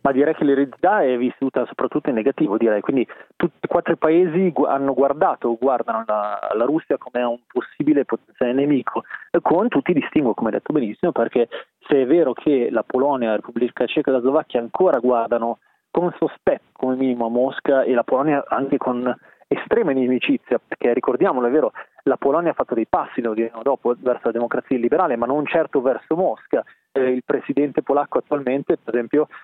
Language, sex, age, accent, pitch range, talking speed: Italian, male, 20-39, native, 125-150 Hz, 190 wpm